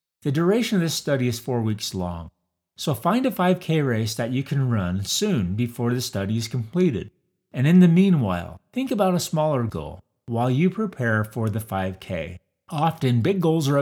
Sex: male